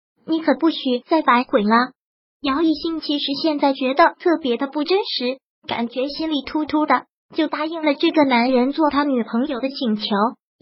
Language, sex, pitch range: Chinese, male, 270-325 Hz